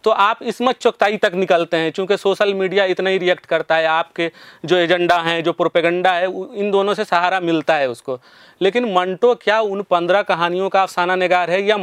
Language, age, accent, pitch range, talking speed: Hindi, 30-49, native, 170-205 Hz, 205 wpm